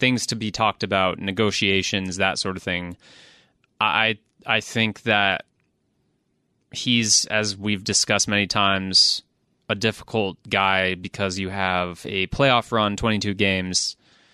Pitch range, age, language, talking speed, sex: 95-110 Hz, 20-39, English, 130 wpm, male